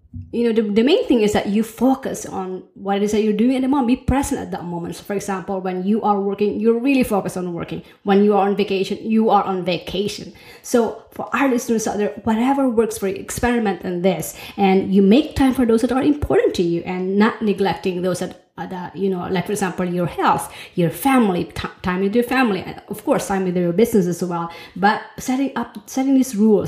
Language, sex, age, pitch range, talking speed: English, female, 20-39, 180-225 Hz, 230 wpm